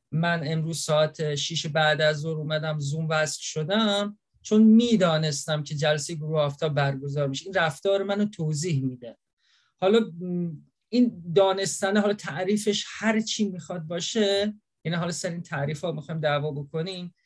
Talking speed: 145 wpm